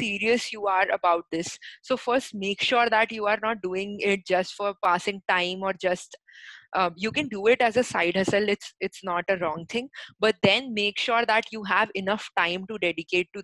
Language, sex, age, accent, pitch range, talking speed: English, female, 20-39, Indian, 180-210 Hz, 215 wpm